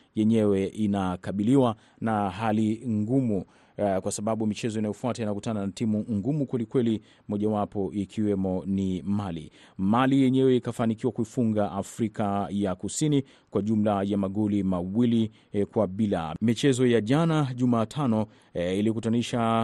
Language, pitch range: Swahili, 100-120 Hz